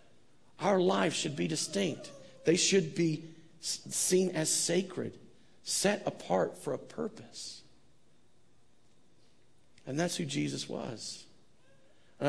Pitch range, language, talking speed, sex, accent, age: 135-165 Hz, English, 105 wpm, male, American, 40-59